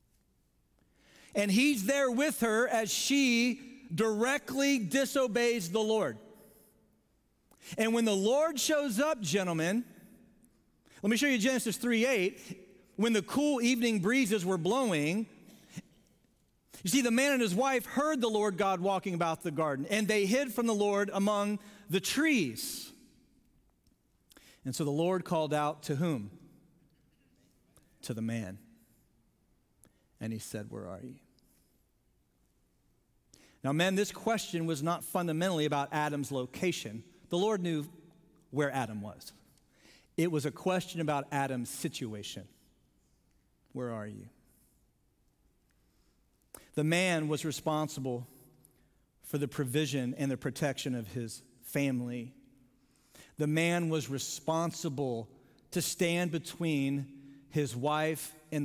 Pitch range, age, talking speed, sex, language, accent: 140-220 Hz, 40-59, 125 wpm, male, English, American